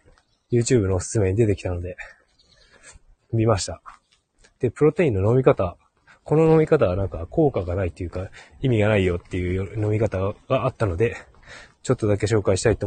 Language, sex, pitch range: Japanese, male, 85-120 Hz